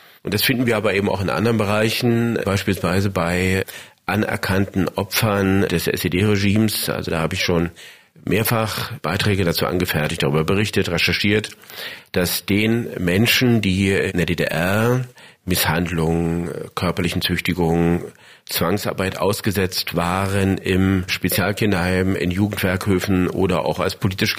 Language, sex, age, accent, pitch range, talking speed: German, male, 40-59, German, 90-110 Hz, 120 wpm